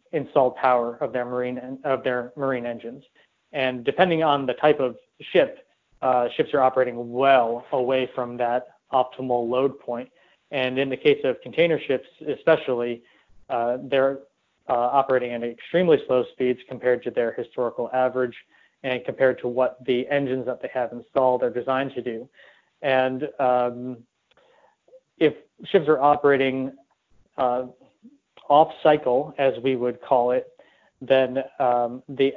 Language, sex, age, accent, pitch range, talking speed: English, male, 30-49, American, 125-140 Hz, 150 wpm